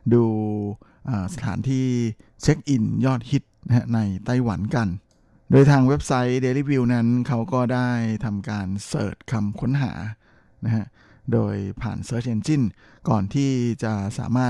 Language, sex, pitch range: Thai, male, 110-130 Hz